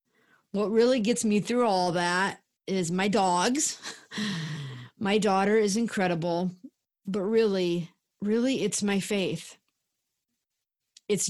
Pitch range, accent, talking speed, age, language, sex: 175-215 Hz, American, 110 wpm, 30-49, English, female